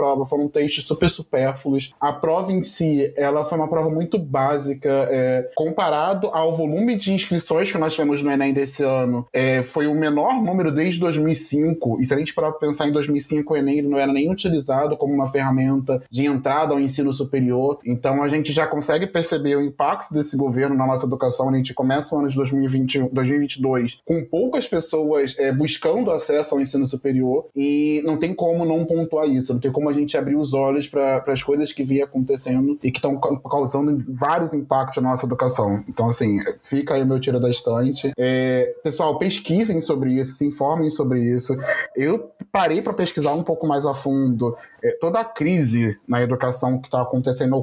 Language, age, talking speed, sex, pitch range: Portuguese, 20-39, 190 wpm, male, 130-155 Hz